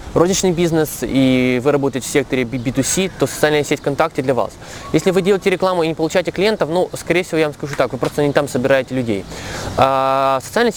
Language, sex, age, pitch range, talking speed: Russian, male, 20-39, 130-160 Hz, 200 wpm